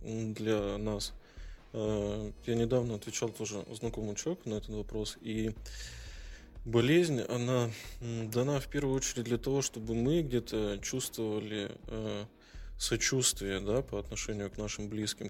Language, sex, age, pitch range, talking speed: Russian, male, 20-39, 105-120 Hz, 125 wpm